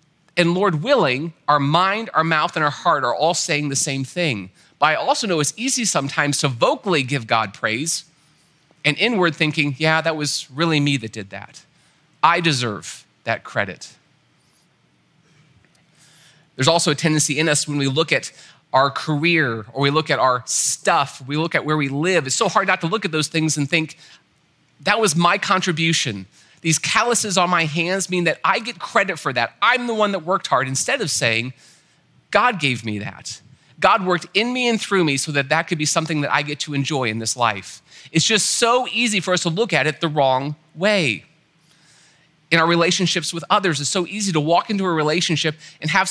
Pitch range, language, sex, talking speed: 145-185 Hz, English, male, 205 wpm